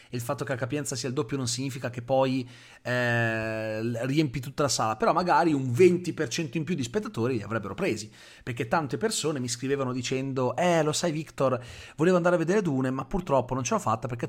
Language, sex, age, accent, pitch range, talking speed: Italian, male, 30-49, native, 115-150 Hz, 210 wpm